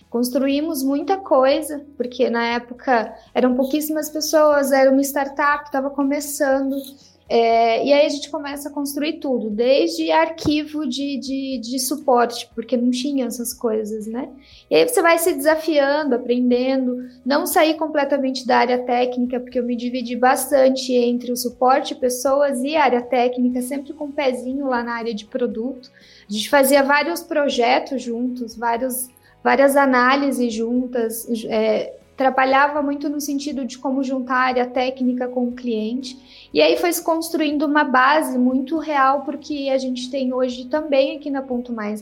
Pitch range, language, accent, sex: 245-290 Hz, Portuguese, Brazilian, female